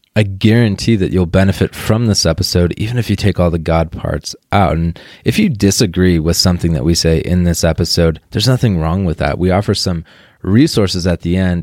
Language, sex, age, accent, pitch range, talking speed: English, male, 20-39, American, 85-100 Hz, 210 wpm